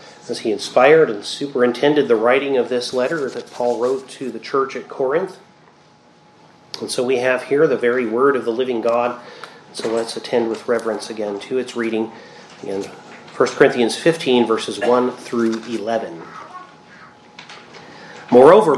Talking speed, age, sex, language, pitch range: 155 wpm, 40-59, male, English, 120-165 Hz